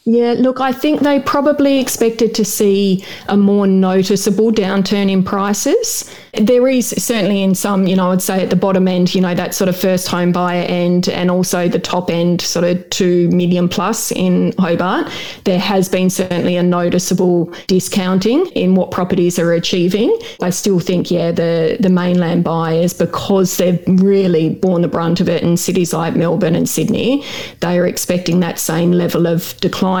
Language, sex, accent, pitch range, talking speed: English, female, Australian, 175-200 Hz, 180 wpm